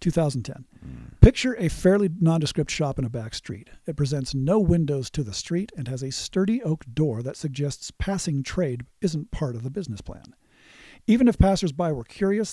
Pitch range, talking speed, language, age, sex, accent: 140-190 Hz, 180 wpm, English, 50-69, male, American